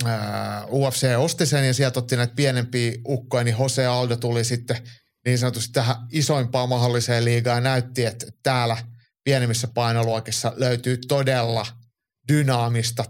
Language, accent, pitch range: Finnish, native, 115-130 Hz